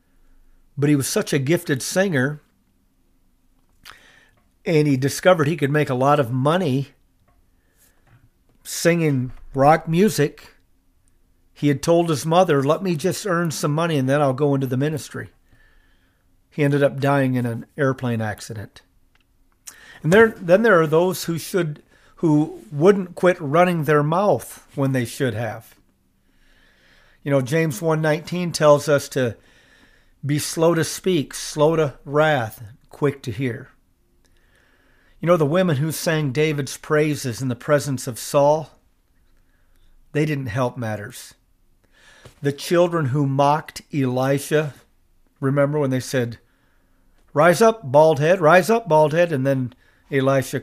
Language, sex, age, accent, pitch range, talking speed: English, male, 40-59, American, 125-155 Hz, 140 wpm